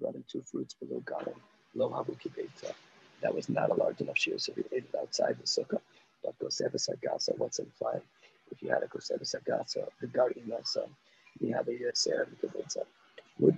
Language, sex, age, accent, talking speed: English, male, 40-59, American, 185 wpm